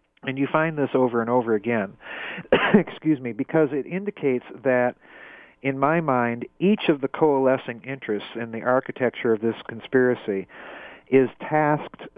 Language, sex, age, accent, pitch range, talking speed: English, male, 50-69, American, 115-130 Hz, 150 wpm